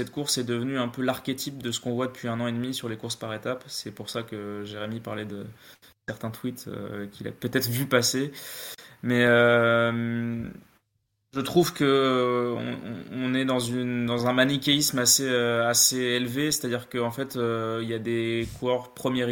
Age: 20-39